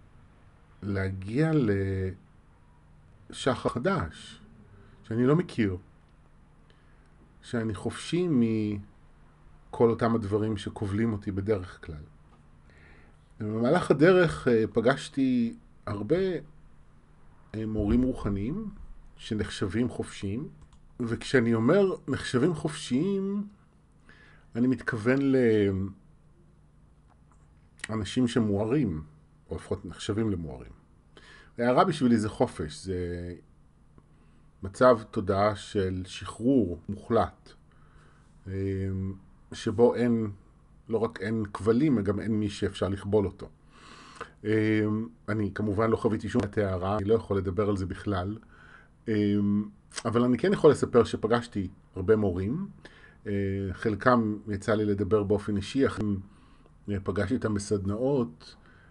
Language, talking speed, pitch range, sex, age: Hebrew, 90 wpm, 95-115 Hz, male, 40-59